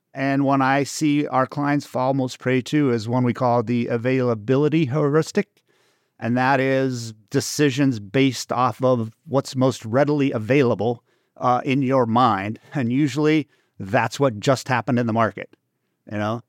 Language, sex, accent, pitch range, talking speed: English, male, American, 120-145 Hz, 155 wpm